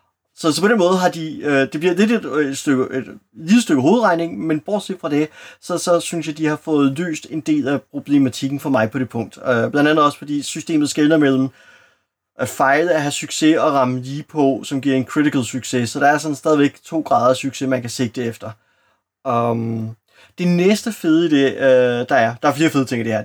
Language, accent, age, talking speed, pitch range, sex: Danish, native, 30-49, 220 wpm, 135-180 Hz, male